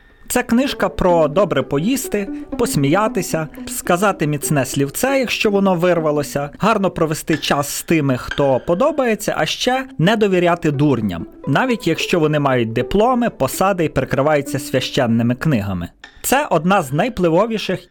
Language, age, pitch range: Ukrainian, 30-49, 135-195 Hz